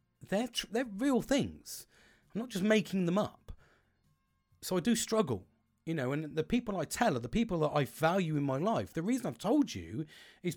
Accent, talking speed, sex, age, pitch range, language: British, 210 wpm, male, 40-59, 130-220 Hz, English